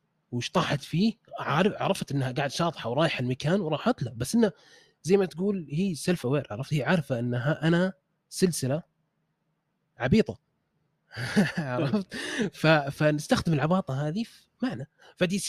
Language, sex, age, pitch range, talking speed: Arabic, male, 30-49, 125-165 Hz, 130 wpm